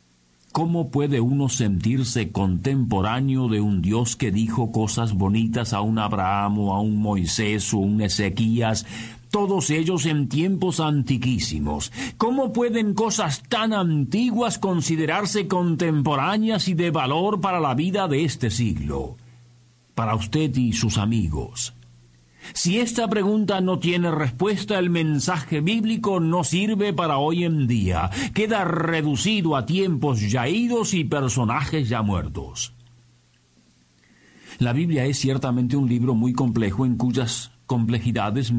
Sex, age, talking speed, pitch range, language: male, 50-69, 130 wpm, 115-175 Hz, Spanish